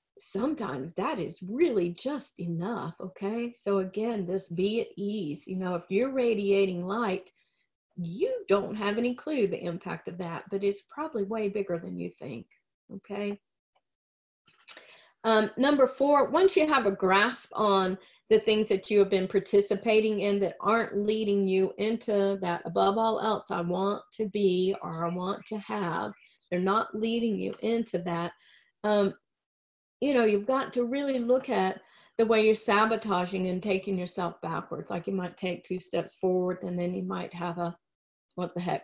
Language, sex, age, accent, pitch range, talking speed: English, female, 40-59, American, 185-220 Hz, 170 wpm